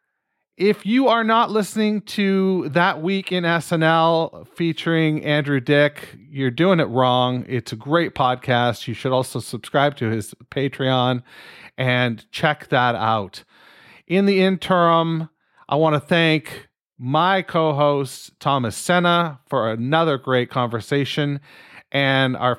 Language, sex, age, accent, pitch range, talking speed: English, male, 40-59, American, 125-170 Hz, 130 wpm